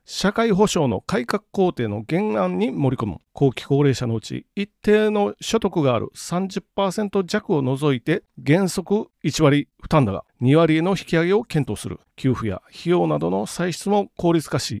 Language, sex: Japanese, male